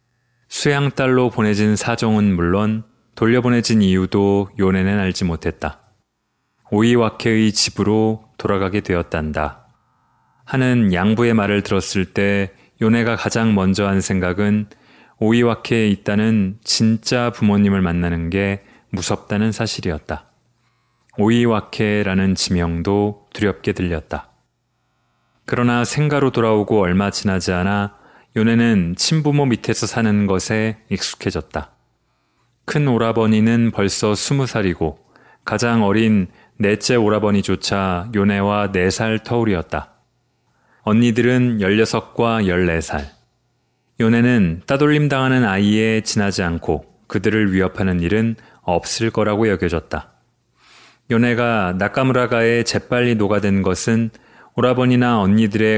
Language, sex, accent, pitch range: Korean, male, native, 95-115 Hz